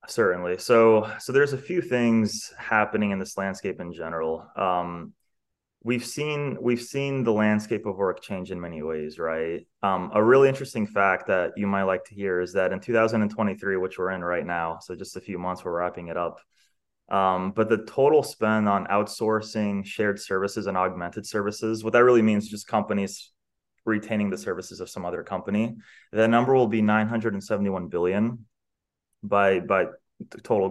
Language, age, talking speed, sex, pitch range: English, 20-39, 180 wpm, male, 95-115 Hz